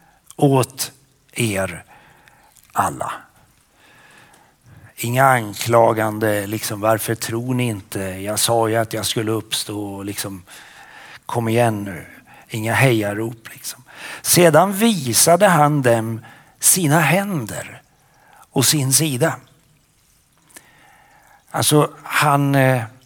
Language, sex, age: Swedish, male, 50-69